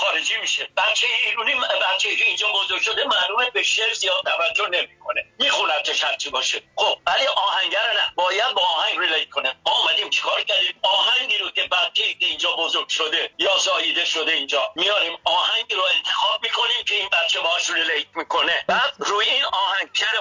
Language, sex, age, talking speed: Persian, male, 50-69, 180 wpm